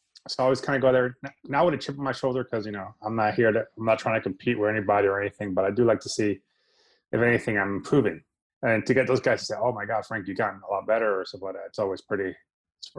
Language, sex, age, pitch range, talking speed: English, male, 20-39, 105-130 Hz, 295 wpm